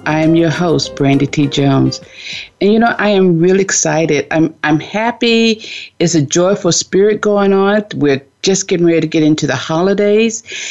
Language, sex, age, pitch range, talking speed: English, female, 50-69, 155-210 Hz, 180 wpm